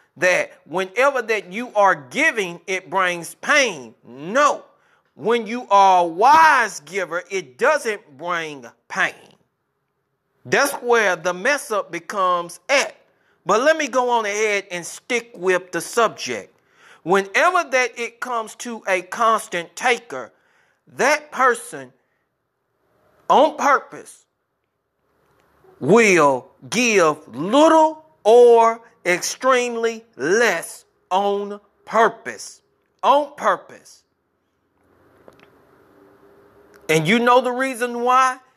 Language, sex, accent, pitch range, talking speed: English, male, American, 185-255 Hz, 105 wpm